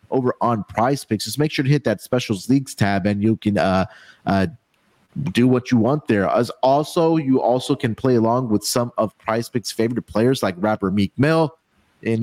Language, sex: English, male